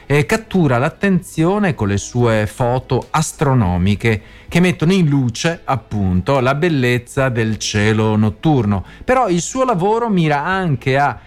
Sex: male